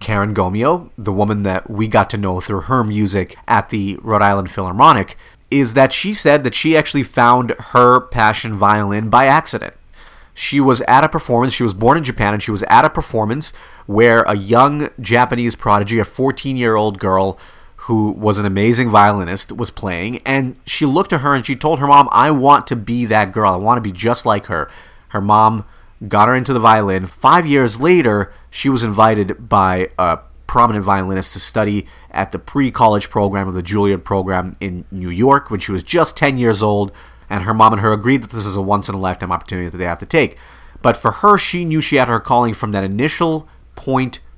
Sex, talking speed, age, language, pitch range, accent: male, 205 wpm, 30-49, English, 100-130 Hz, American